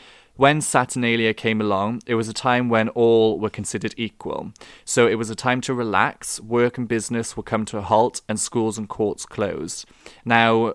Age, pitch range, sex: 20-39, 105-115 Hz, male